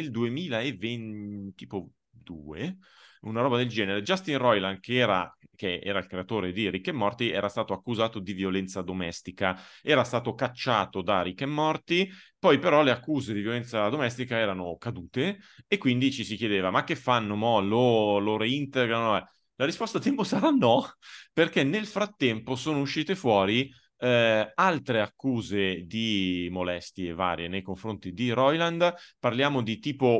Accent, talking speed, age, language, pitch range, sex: native, 155 wpm, 30-49, Italian, 100-125 Hz, male